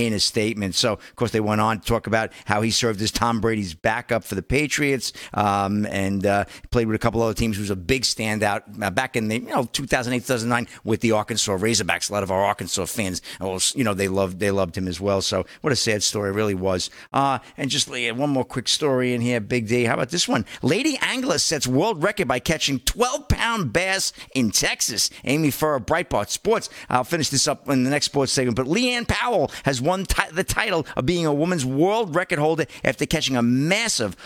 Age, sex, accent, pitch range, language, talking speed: 50-69, male, American, 110-155 Hz, English, 230 wpm